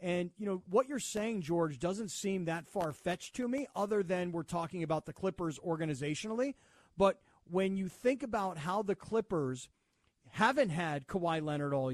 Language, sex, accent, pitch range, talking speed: English, male, American, 175-225 Hz, 170 wpm